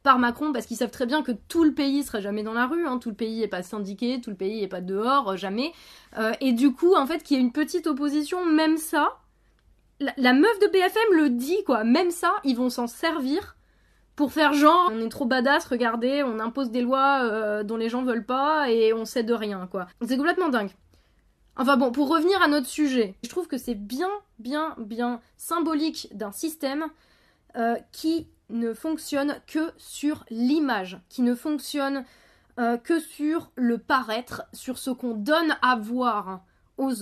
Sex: female